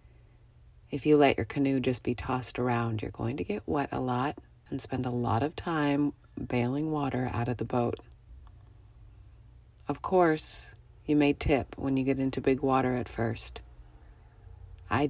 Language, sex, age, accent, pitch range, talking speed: English, female, 30-49, American, 110-140 Hz, 165 wpm